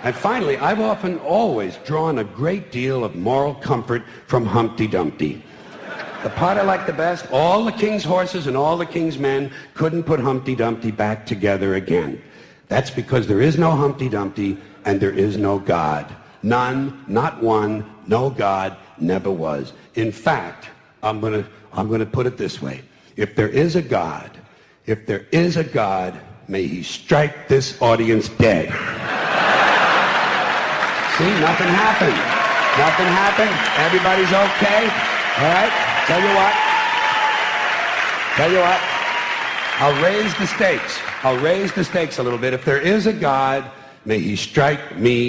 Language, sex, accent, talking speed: English, male, American, 160 wpm